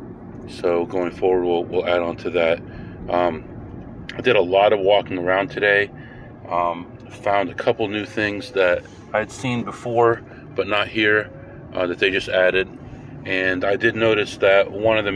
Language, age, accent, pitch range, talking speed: English, 40-59, American, 95-120 Hz, 175 wpm